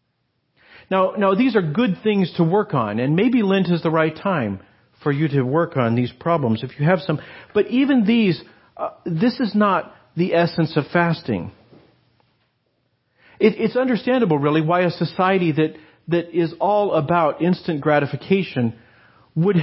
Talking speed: 160 wpm